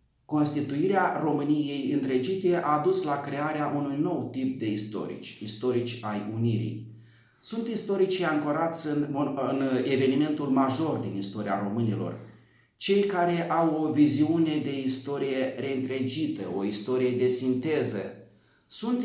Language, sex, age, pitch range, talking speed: Romanian, male, 30-49, 120-155 Hz, 120 wpm